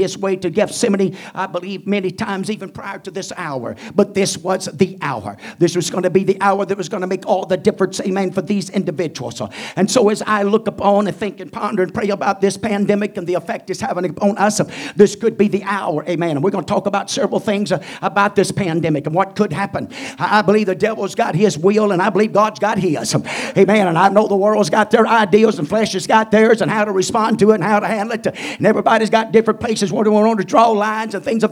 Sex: male